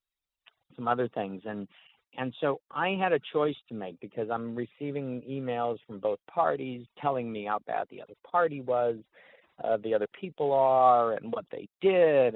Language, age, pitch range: English, 50-69, 105-130 Hz